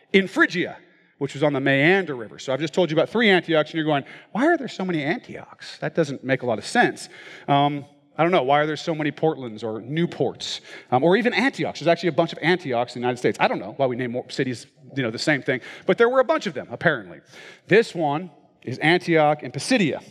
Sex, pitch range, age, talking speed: male, 135-175 Hz, 40-59, 255 wpm